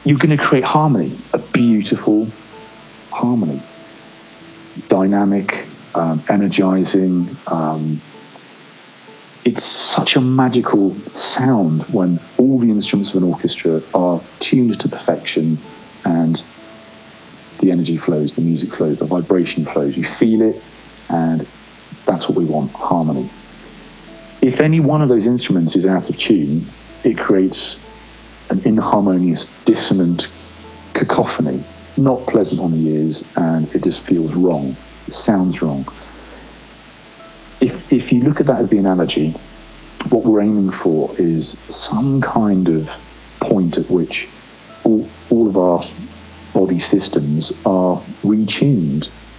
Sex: male